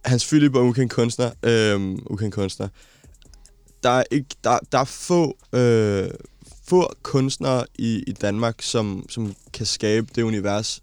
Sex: male